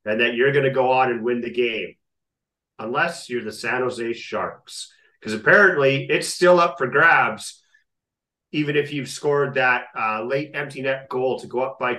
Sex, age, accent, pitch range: male, 40-59, American, 130-185 Hz